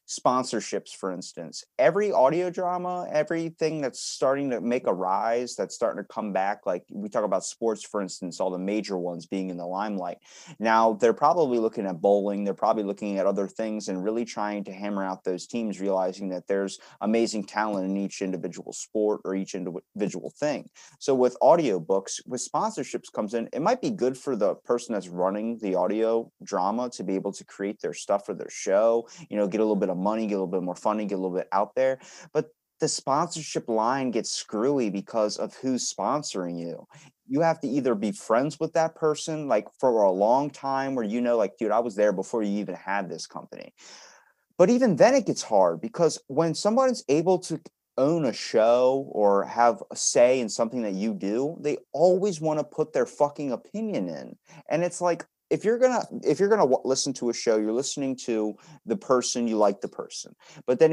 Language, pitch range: English, 100-155 Hz